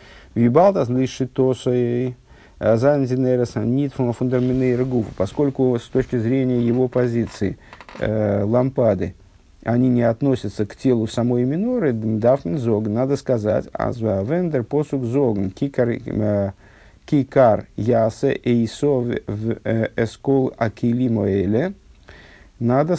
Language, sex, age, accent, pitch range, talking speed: Russian, male, 50-69, native, 100-130 Hz, 90 wpm